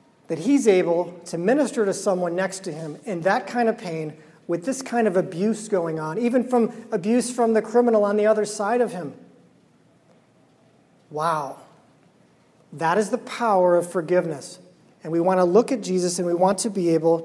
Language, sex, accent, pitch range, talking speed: English, male, American, 170-215 Hz, 190 wpm